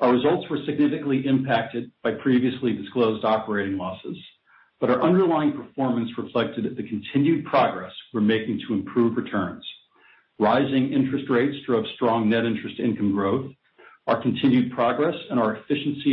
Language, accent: English, American